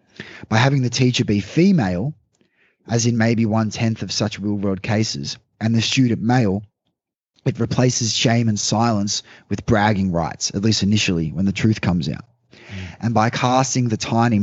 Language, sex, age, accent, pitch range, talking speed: English, male, 20-39, Australian, 105-160 Hz, 160 wpm